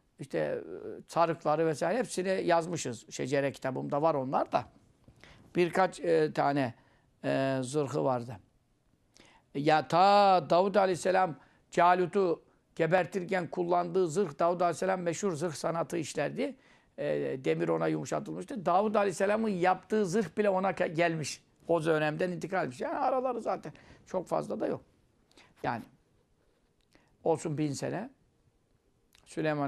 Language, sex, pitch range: Turkish, male, 145-190 Hz